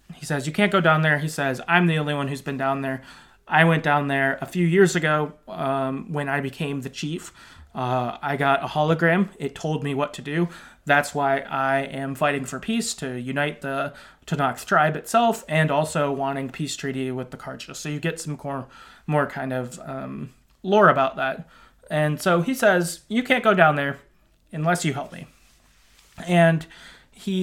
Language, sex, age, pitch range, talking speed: English, male, 20-39, 135-170 Hz, 195 wpm